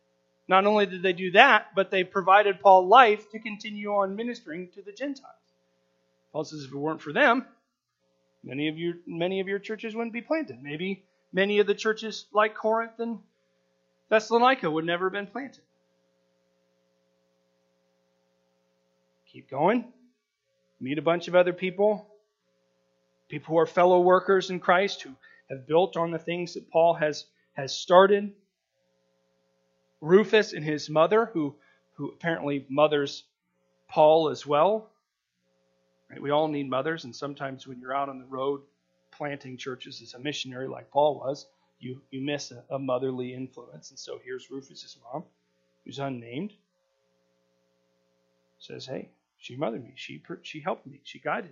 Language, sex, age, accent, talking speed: English, male, 30-49, American, 155 wpm